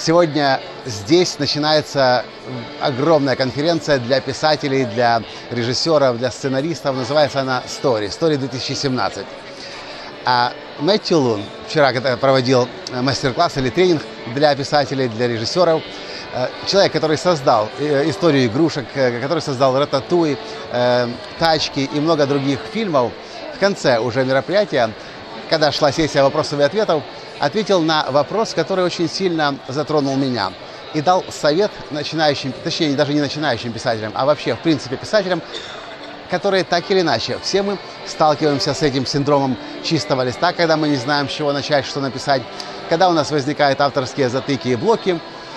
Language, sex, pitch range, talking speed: Russian, male, 135-165 Hz, 135 wpm